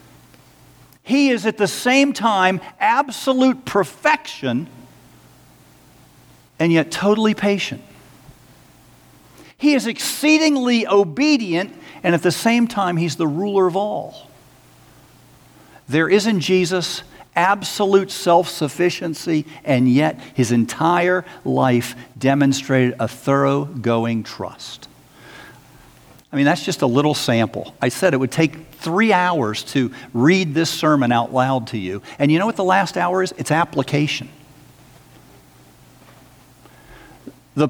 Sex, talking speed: male, 120 wpm